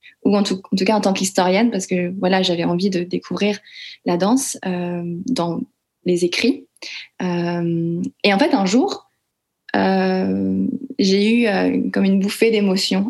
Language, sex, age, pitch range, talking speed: French, female, 20-39, 185-230 Hz, 165 wpm